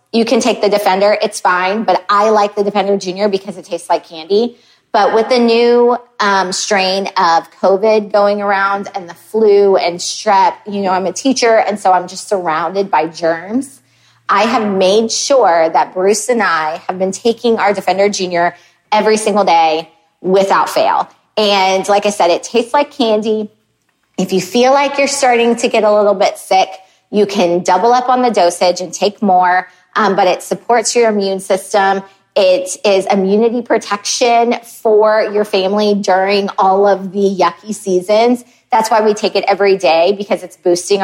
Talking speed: 180 wpm